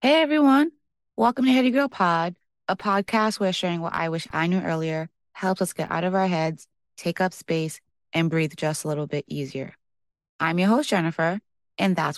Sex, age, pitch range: female, 20-39, 155-215 Hz